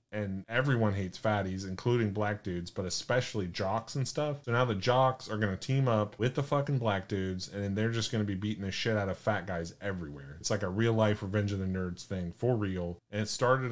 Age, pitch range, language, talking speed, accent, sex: 30-49, 100-125 Hz, English, 240 wpm, American, male